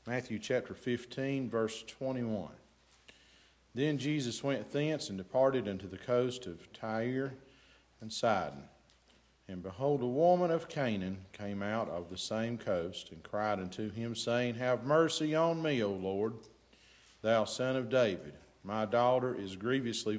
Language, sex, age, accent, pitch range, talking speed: English, male, 50-69, American, 105-140 Hz, 145 wpm